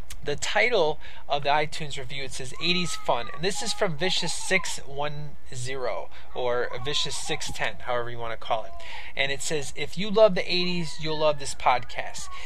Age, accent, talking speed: 20-39, American, 170 wpm